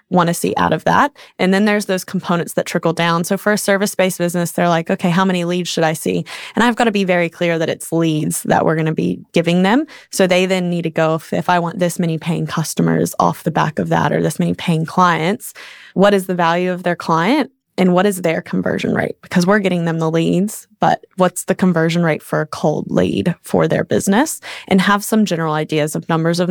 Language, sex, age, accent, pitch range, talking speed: English, female, 20-39, American, 165-185 Hz, 245 wpm